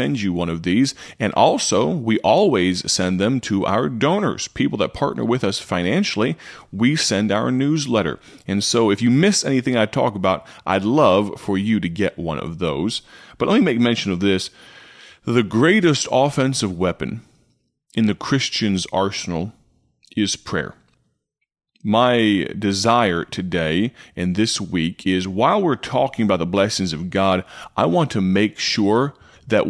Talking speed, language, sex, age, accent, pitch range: 160 wpm, English, male, 30-49, American, 95-120 Hz